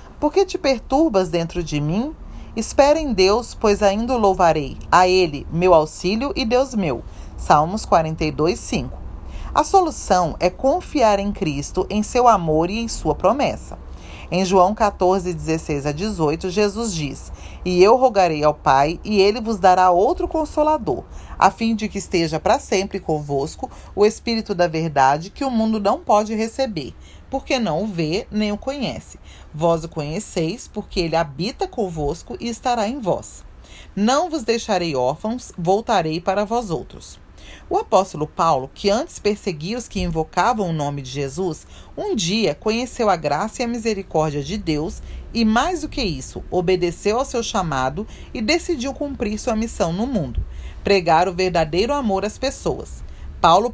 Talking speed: 165 wpm